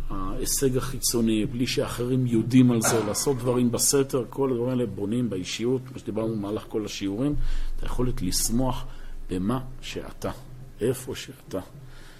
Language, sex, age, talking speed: Hebrew, male, 50-69, 140 wpm